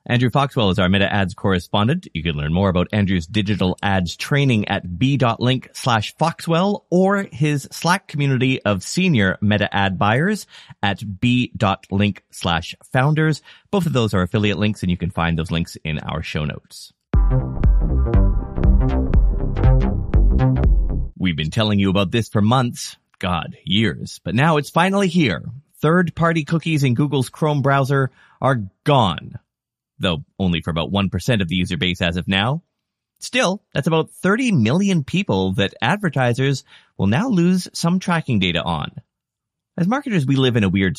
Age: 30-49